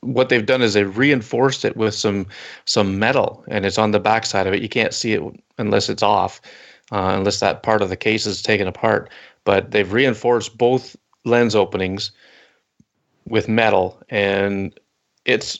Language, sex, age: English, male, 30-49